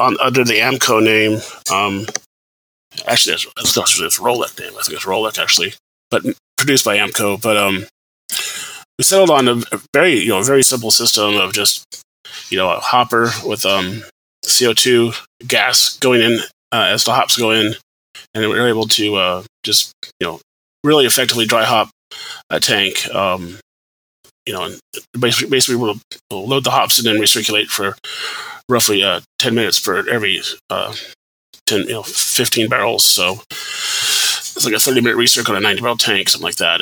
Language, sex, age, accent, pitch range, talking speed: English, male, 20-39, American, 100-125 Hz, 175 wpm